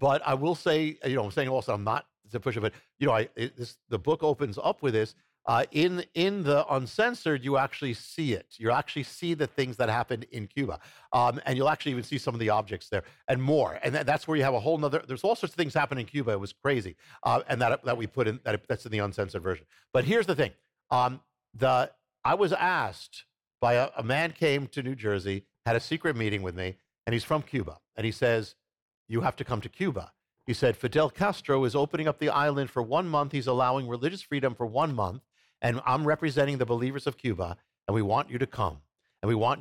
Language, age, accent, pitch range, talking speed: English, 50-69, American, 115-145 Hz, 250 wpm